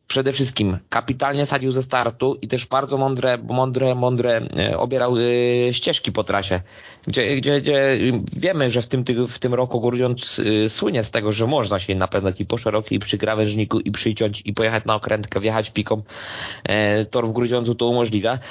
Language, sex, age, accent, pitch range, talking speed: Polish, male, 20-39, native, 110-130 Hz, 170 wpm